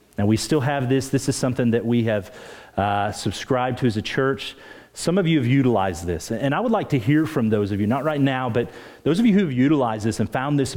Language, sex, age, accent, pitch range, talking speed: English, male, 40-59, American, 120-155 Hz, 260 wpm